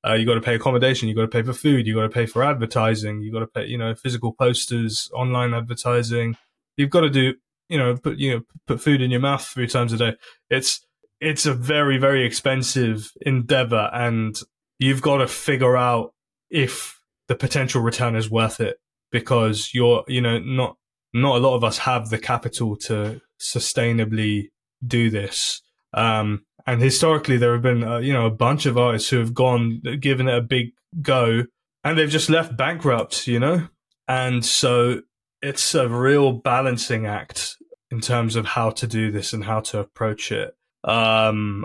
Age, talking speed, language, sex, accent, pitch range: 20-39, 190 wpm, English, male, British, 115-130 Hz